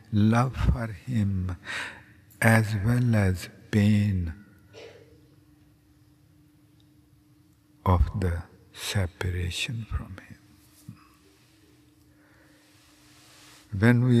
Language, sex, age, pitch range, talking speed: English, male, 60-79, 95-115 Hz, 60 wpm